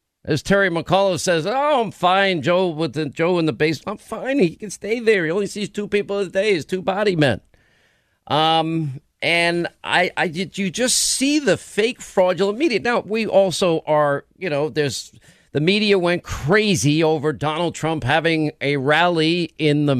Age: 50-69